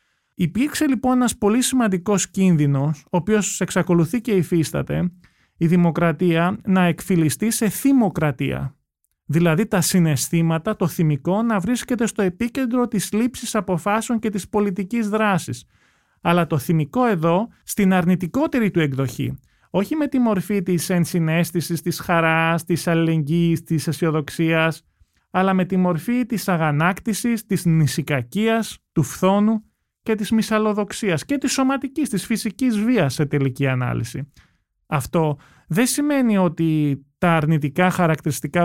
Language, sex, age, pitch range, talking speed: Greek, male, 30-49, 155-205 Hz, 120 wpm